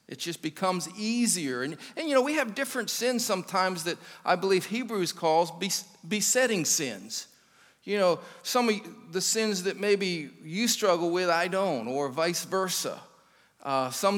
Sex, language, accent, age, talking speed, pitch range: male, English, American, 40-59, 160 wpm, 150-205 Hz